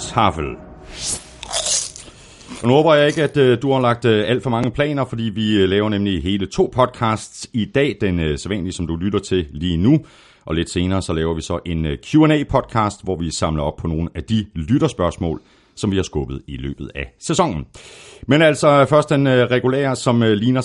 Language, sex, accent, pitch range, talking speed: Danish, male, native, 95-130 Hz, 185 wpm